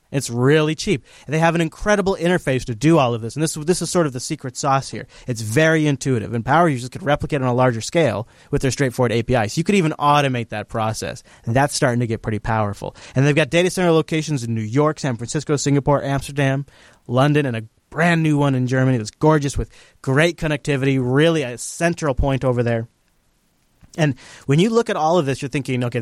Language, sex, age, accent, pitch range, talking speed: English, male, 30-49, American, 130-155 Hz, 220 wpm